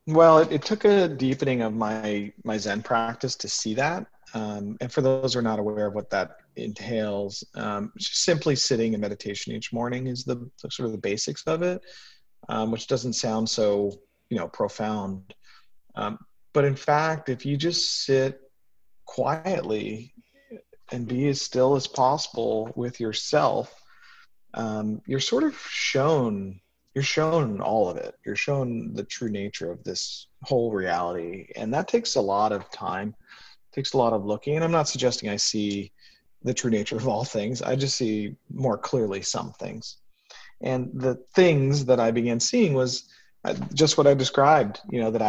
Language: English